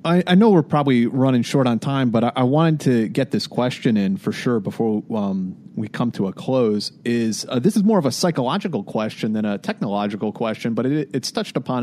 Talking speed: 230 wpm